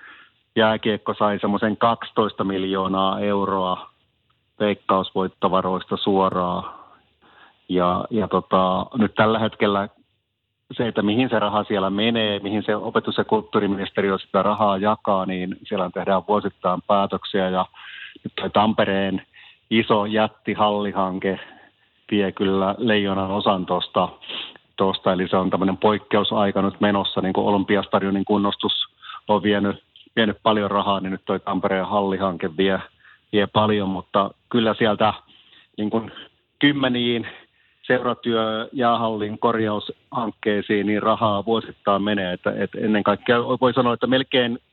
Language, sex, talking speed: Finnish, male, 120 wpm